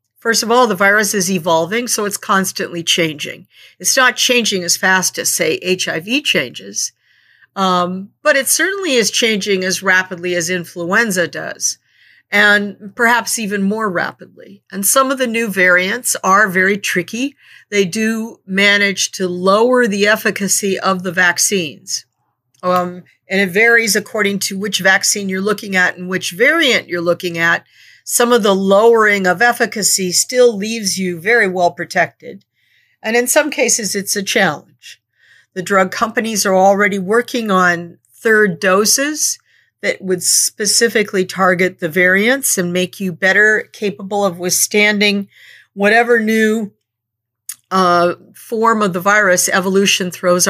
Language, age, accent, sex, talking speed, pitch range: English, 50-69, American, female, 145 wpm, 180-220 Hz